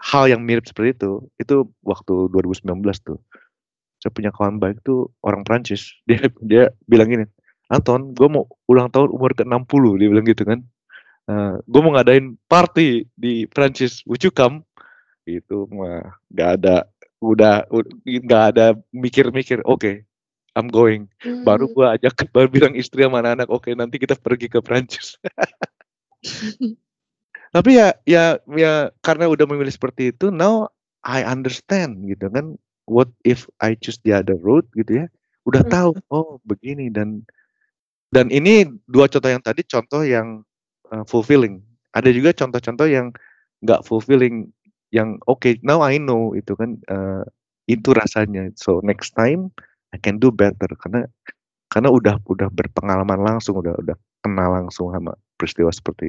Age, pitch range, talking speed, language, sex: 30-49, 105-135 Hz, 155 wpm, Indonesian, male